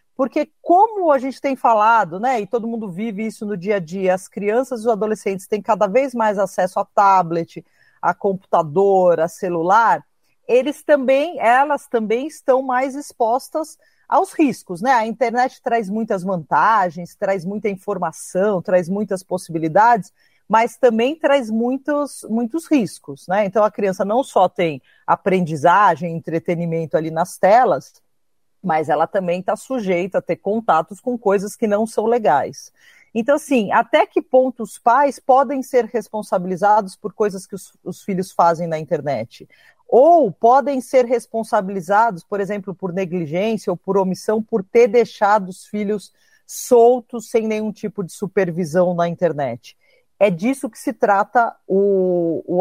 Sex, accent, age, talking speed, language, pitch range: female, Brazilian, 40-59, 155 wpm, Portuguese, 185-250 Hz